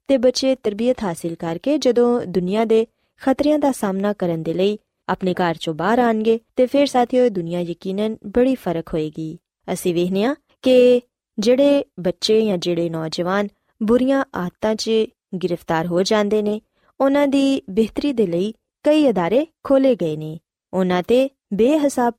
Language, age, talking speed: Punjabi, 20-39, 150 wpm